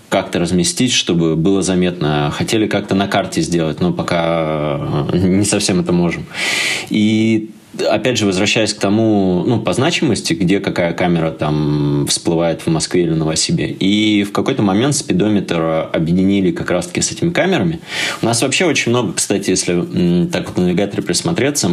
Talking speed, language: 160 wpm, Russian